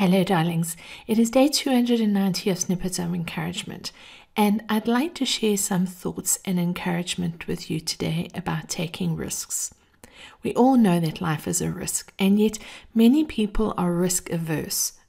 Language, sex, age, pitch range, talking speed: English, female, 50-69, 175-205 Hz, 160 wpm